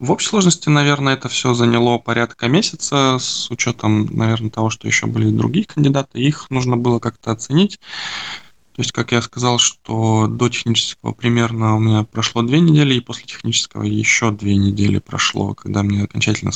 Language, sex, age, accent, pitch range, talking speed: Russian, male, 20-39, native, 110-125 Hz, 170 wpm